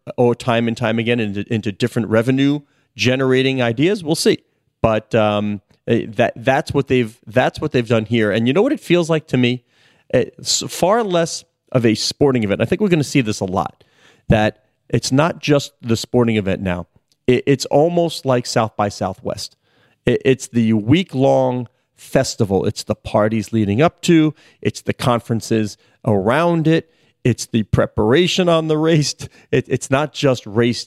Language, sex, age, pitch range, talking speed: English, male, 40-59, 110-140 Hz, 175 wpm